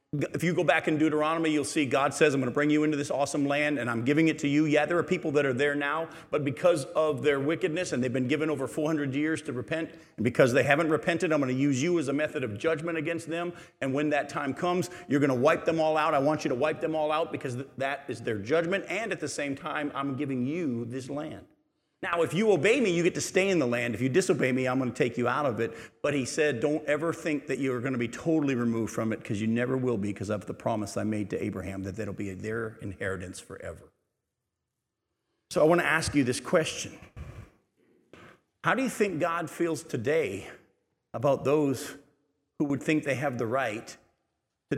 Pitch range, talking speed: 125-160 Hz, 245 wpm